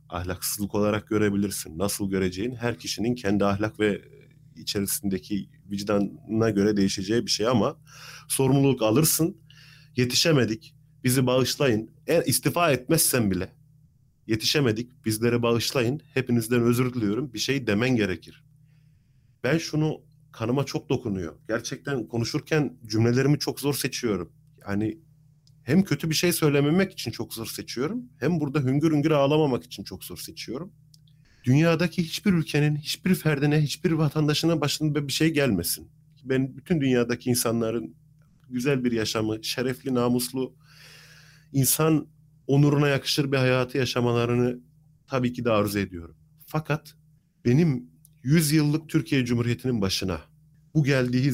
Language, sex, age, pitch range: Turkish, male, 30-49, 120-150 Hz